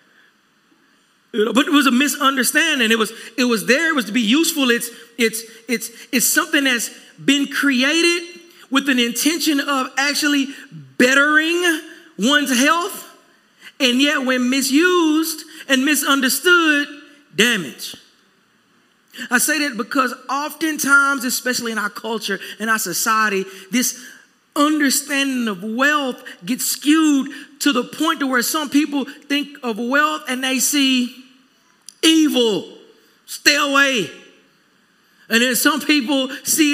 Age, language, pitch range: 40-59, English, 235-290 Hz